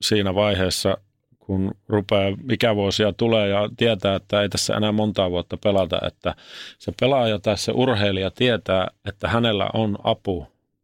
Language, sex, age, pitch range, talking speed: Finnish, male, 30-49, 95-110 Hz, 150 wpm